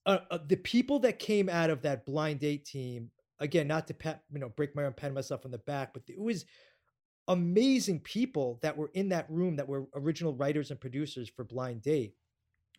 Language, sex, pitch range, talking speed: English, male, 135-165 Hz, 215 wpm